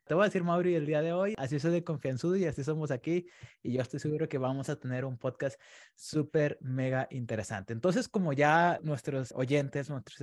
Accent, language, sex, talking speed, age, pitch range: Mexican, Spanish, male, 210 wpm, 20-39, 130-165 Hz